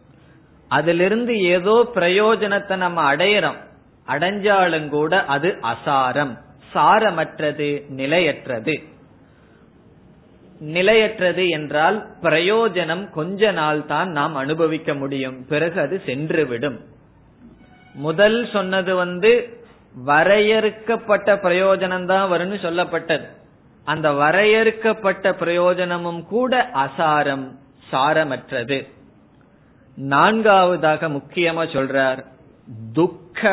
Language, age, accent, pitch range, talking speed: Tamil, 20-39, native, 150-195 Hz, 70 wpm